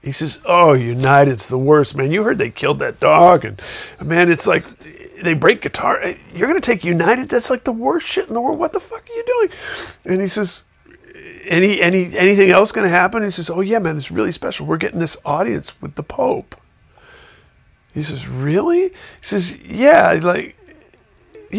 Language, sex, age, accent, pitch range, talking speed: English, male, 40-59, American, 130-175 Hz, 190 wpm